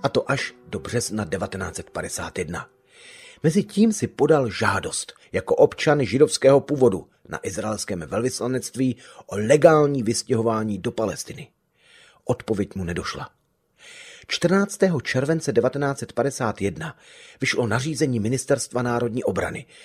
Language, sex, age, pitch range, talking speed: Czech, male, 30-49, 100-140 Hz, 100 wpm